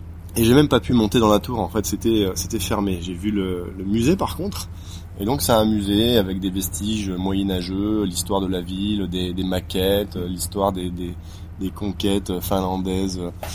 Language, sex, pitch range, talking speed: French, male, 90-110 Hz, 190 wpm